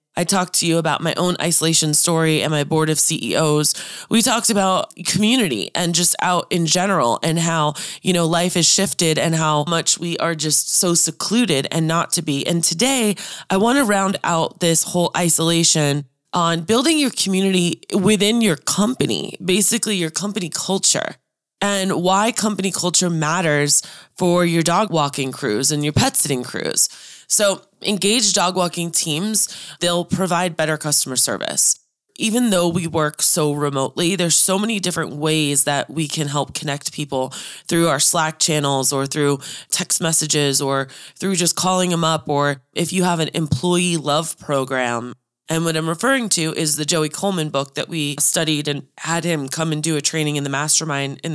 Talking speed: 175 wpm